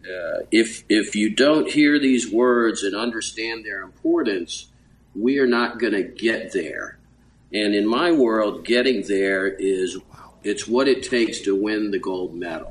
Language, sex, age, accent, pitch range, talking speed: English, male, 50-69, American, 105-130 Hz, 165 wpm